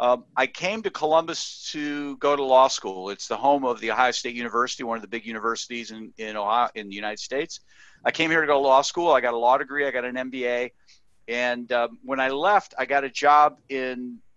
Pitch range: 125-155 Hz